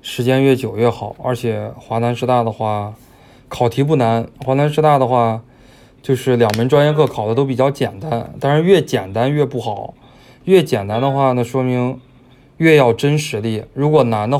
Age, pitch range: 20-39, 115-130 Hz